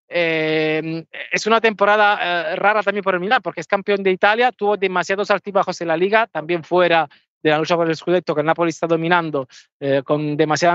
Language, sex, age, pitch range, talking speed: Spanish, male, 30-49, 165-205 Hz, 205 wpm